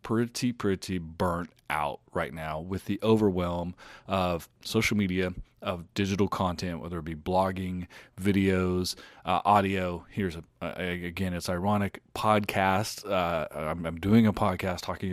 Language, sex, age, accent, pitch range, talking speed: English, male, 30-49, American, 90-105 Hz, 145 wpm